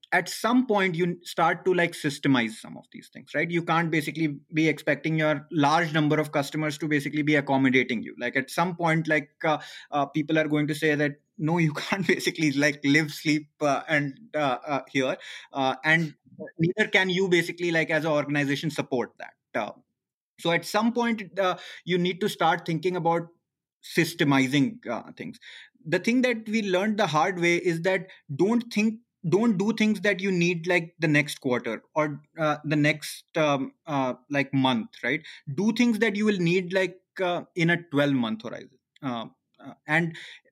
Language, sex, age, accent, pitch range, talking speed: English, male, 20-39, Indian, 150-190 Hz, 185 wpm